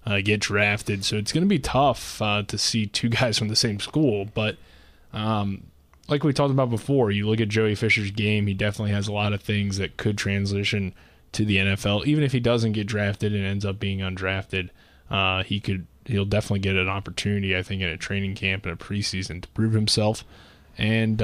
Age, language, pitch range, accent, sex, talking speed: 20-39, English, 95-110 Hz, American, male, 215 wpm